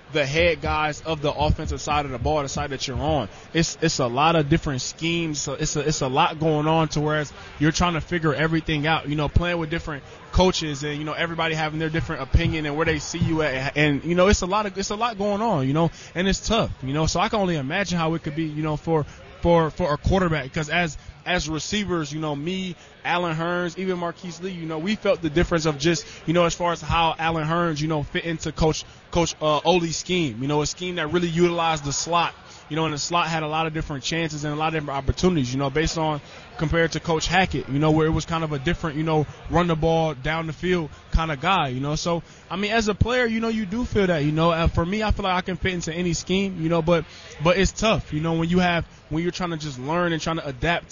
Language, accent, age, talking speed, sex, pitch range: English, American, 20-39, 275 wpm, male, 150-175 Hz